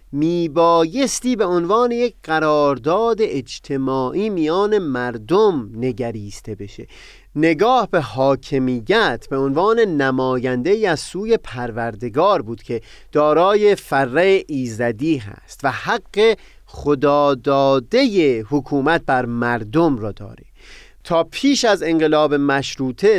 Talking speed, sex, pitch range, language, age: 105 wpm, male, 130-190 Hz, Persian, 30-49